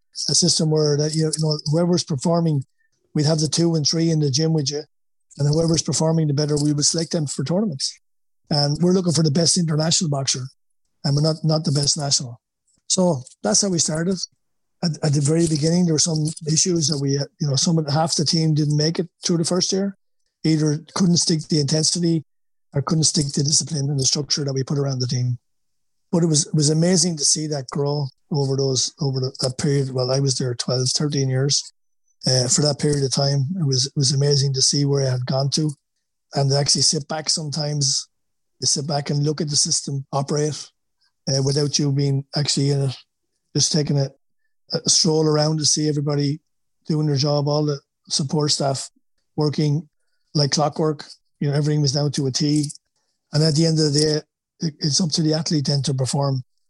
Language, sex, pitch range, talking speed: English, male, 140-165 Hz, 205 wpm